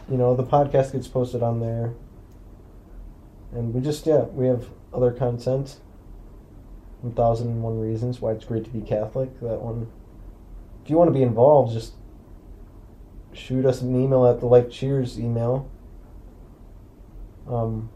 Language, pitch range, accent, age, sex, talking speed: English, 105-125 Hz, American, 20-39, male, 155 wpm